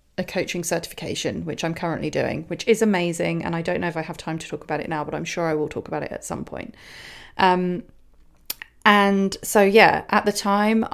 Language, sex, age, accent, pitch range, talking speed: English, female, 30-49, British, 175-220 Hz, 225 wpm